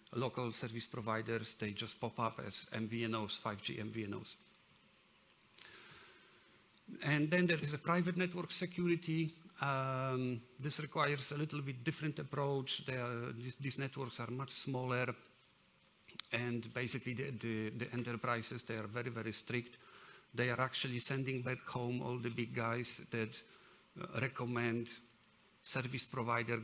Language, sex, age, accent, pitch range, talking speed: English, male, 50-69, Polish, 115-135 Hz, 130 wpm